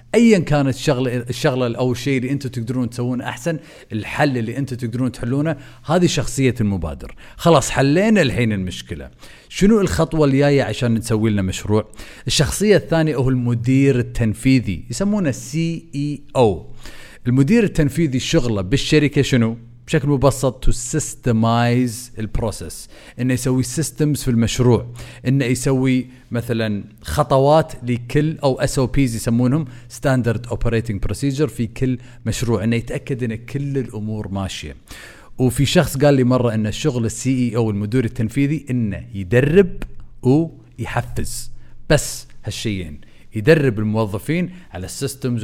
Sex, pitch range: male, 110-140 Hz